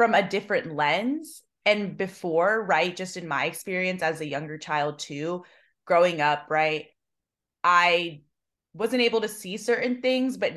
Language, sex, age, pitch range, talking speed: English, female, 20-39, 160-200 Hz, 155 wpm